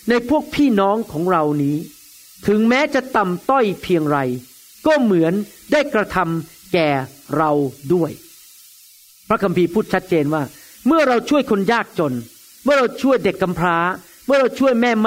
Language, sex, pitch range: Thai, male, 165-235 Hz